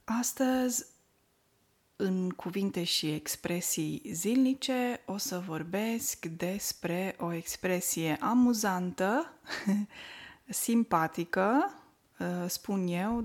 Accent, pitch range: native, 180-230 Hz